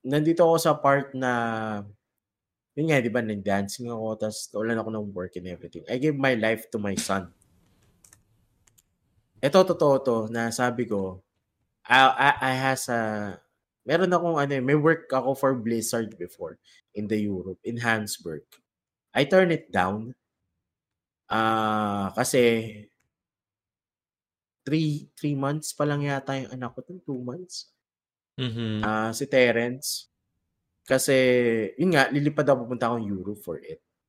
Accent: native